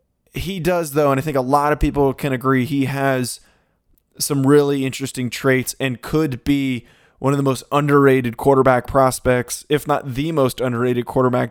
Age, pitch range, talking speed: 20-39, 130-160 Hz, 175 wpm